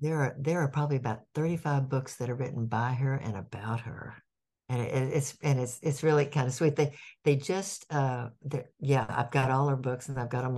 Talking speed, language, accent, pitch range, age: 225 wpm, English, American, 120-140 Hz, 60-79